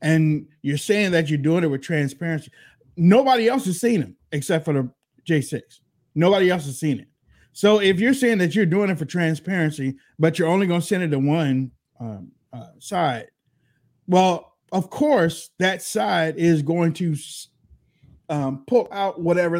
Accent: American